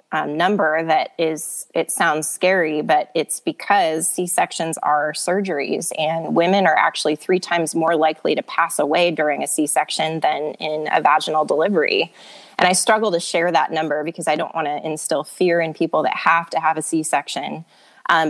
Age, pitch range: 20-39, 155-180 Hz